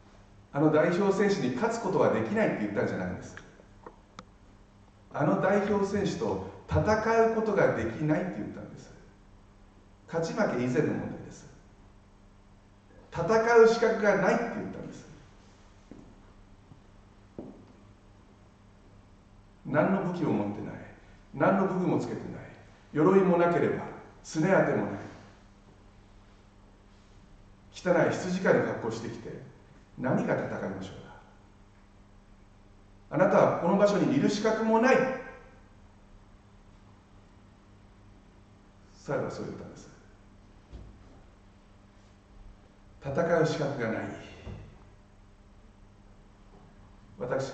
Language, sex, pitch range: Japanese, male, 100-125 Hz